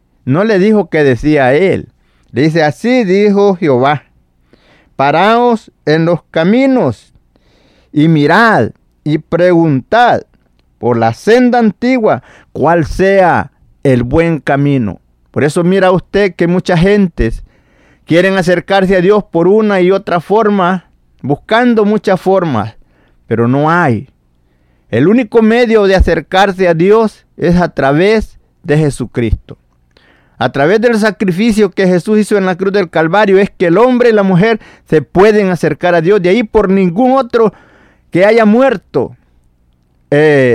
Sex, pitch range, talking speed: male, 135-205 Hz, 140 wpm